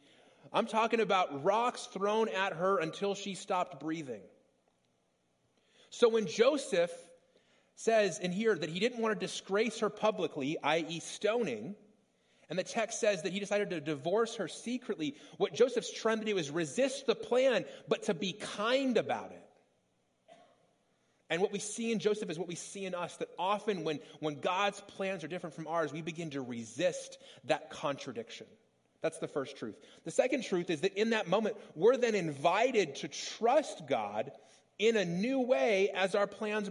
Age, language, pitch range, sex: 30-49, English, 185-225 Hz, male